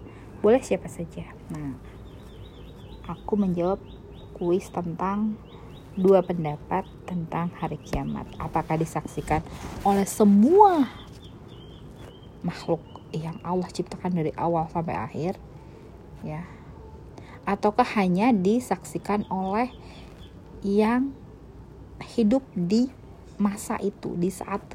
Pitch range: 175-220 Hz